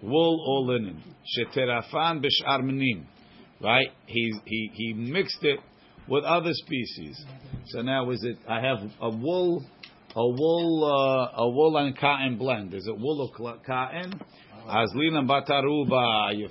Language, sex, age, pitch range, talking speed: English, male, 50-69, 115-150 Hz, 140 wpm